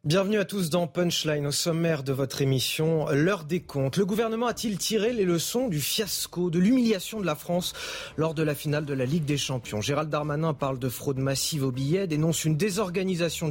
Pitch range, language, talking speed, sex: 140-185 Hz, French, 205 wpm, male